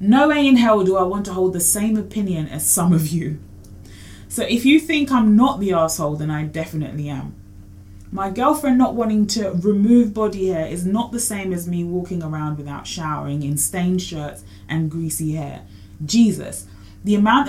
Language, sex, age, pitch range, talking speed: English, female, 20-39, 155-215 Hz, 190 wpm